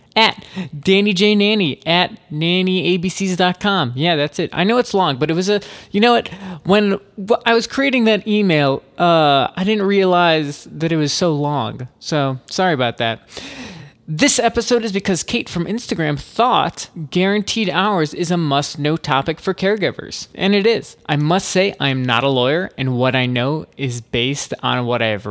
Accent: American